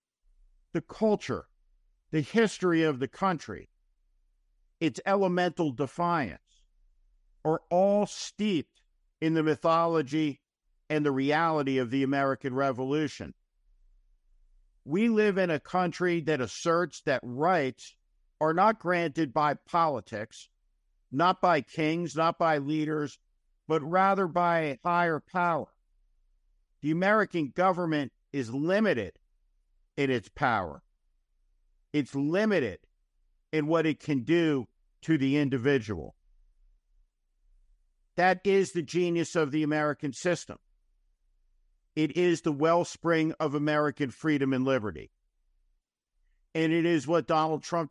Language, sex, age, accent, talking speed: English, male, 50-69, American, 115 wpm